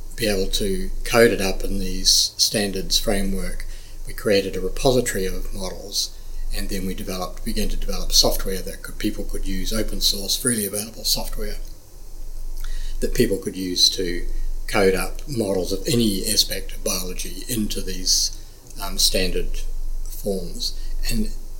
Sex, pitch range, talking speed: male, 95-105 Hz, 145 wpm